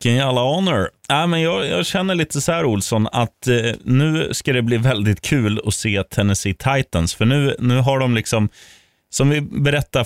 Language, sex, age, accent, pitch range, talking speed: Swedish, male, 30-49, native, 95-135 Hz, 195 wpm